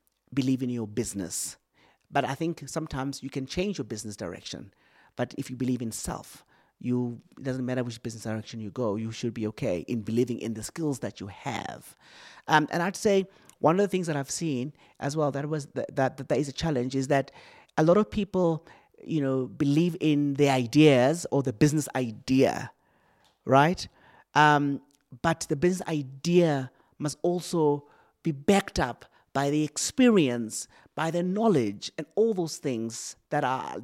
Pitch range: 120-150 Hz